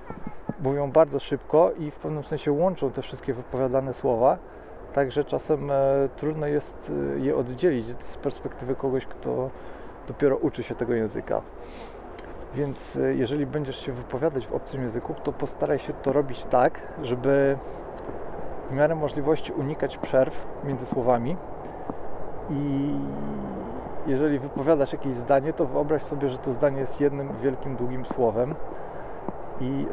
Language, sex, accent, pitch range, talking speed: Polish, male, native, 115-140 Hz, 130 wpm